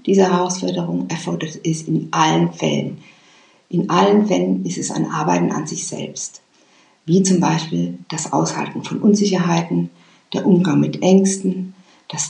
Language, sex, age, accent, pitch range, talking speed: German, female, 50-69, German, 155-200 Hz, 140 wpm